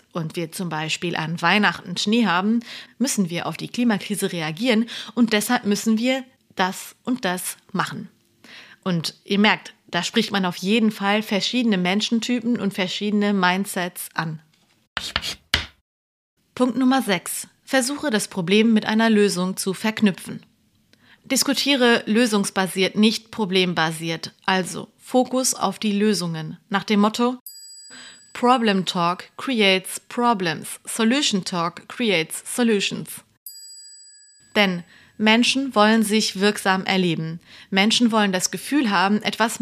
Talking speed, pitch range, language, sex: 120 wpm, 180-235 Hz, German, female